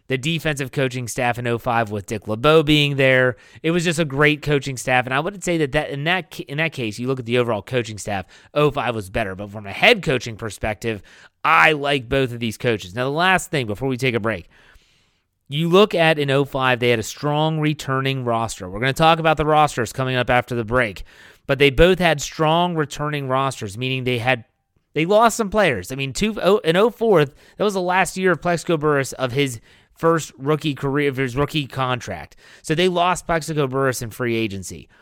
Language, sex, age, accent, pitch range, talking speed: English, male, 30-49, American, 120-170 Hz, 220 wpm